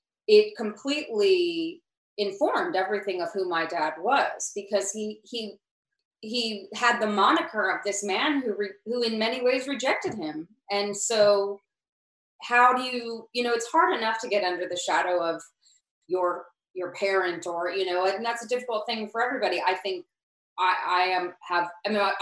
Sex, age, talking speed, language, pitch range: female, 30-49, 175 wpm, English, 175-225 Hz